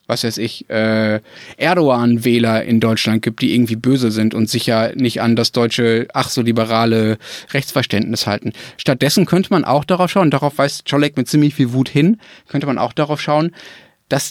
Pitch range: 125-155 Hz